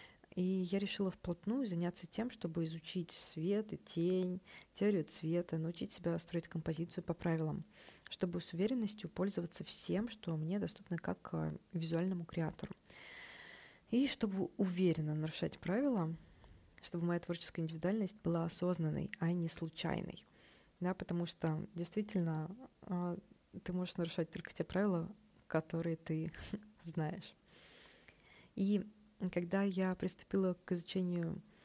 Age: 20-39